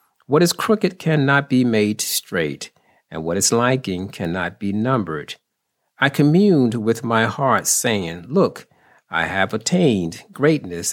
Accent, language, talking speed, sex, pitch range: American, English, 135 wpm, male, 100-145 Hz